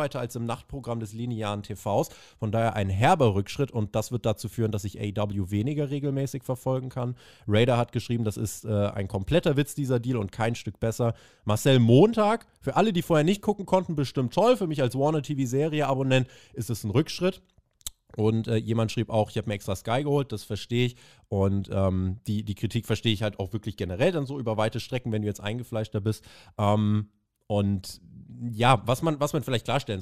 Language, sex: German, male